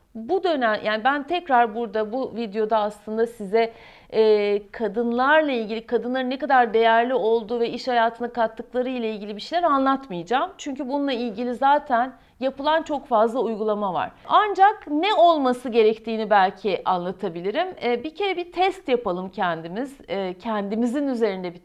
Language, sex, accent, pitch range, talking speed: Turkish, female, native, 215-285 Hz, 145 wpm